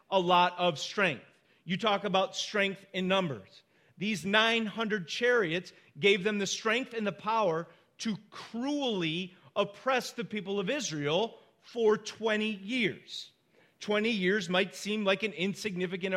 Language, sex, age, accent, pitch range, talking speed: English, male, 40-59, American, 180-225 Hz, 140 wpm